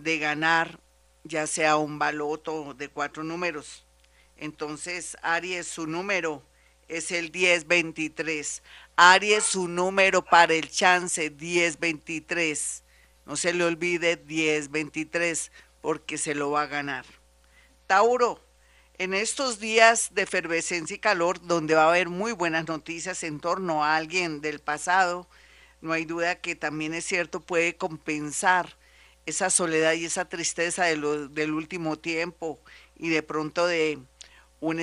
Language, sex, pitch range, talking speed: Spanish, female, 155-180 Hz, 135 wpm